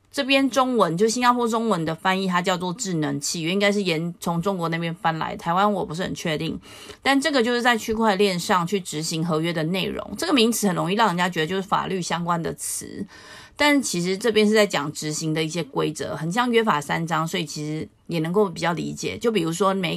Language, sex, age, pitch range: Chinese, female, 30-49, 160-210 Hz